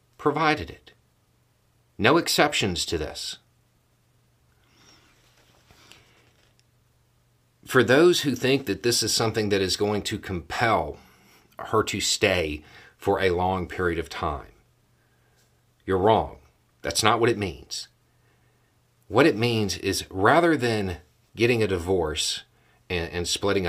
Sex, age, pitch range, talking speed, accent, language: male, 40-59, 95-120 Hz, 120 wpm, American, English